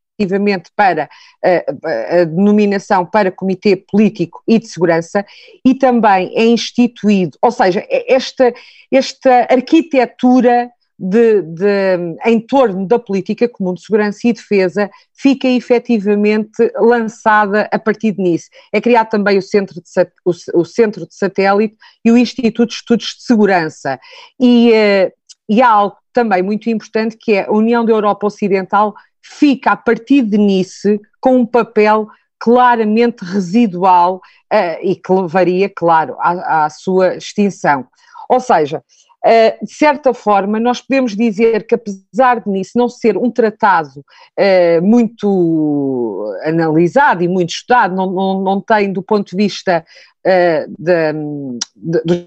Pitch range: 180-235 Hz